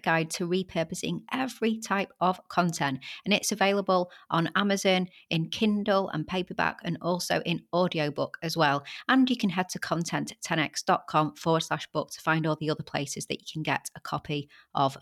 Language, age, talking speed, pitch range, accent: English, 30-49, 175 wpm, 165-210 Hz, British